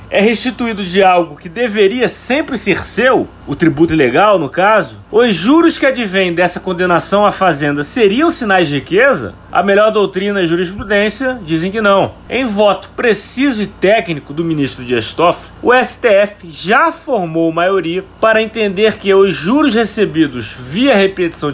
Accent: Brazilian